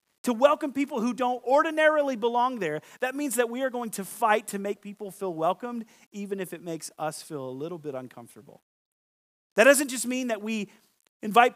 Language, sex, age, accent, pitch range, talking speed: English, male, 30-49, American, 140-225 Hz, 195 wpm